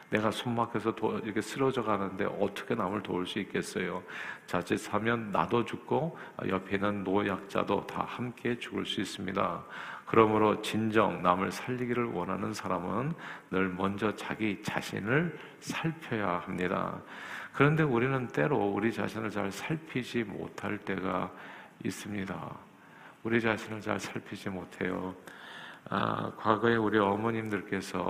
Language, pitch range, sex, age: Korean, 95-115 Hz, male, 50-69